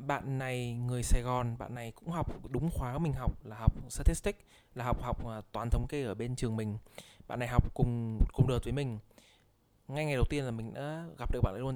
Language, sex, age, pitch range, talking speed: Vietnamese, male, 20-39, 110-145 Hz, 235 wpm